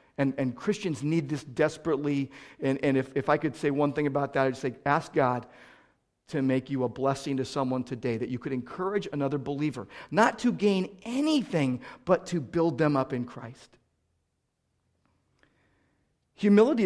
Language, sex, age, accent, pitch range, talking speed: English, male, 50-69, American, 135-195 Hz, 165 wpm